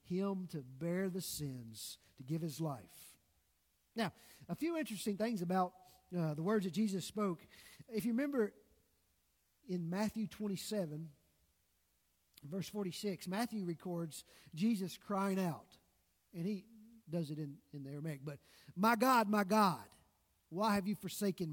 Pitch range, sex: 160-230 Hz, male